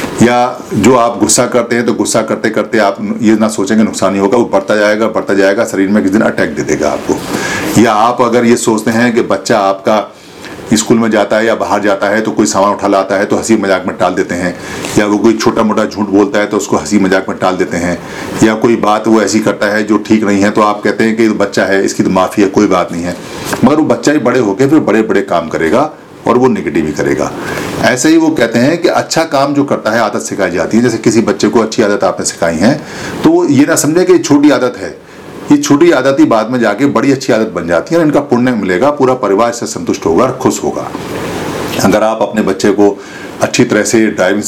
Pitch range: 100-120 Hz